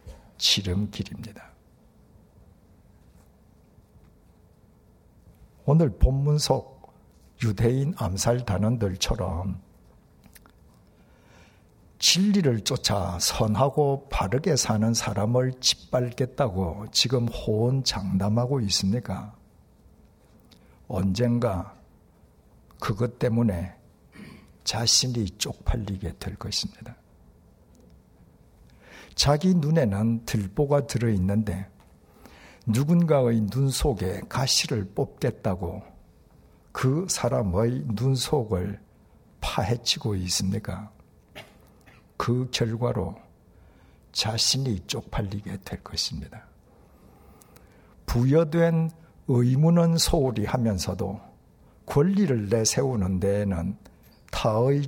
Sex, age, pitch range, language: male, 60-79, 95-130 Hz, Korean